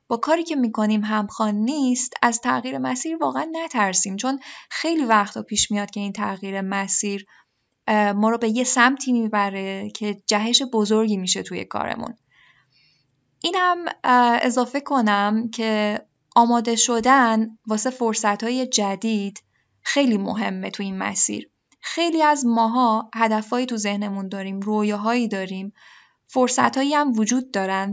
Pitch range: 210-260 Hz